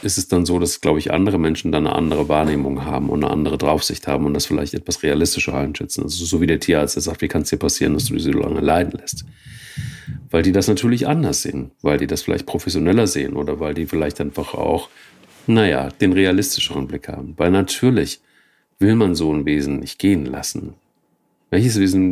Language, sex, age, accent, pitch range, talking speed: German, male, 40-59, German, 75-105 Hz, 210 wpm